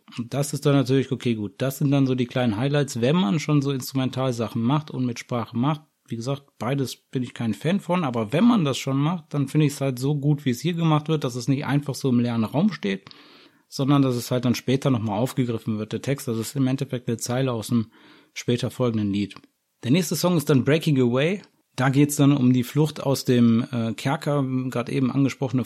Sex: male